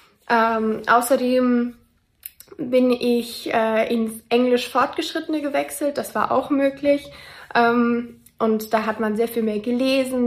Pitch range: 225-265 Hz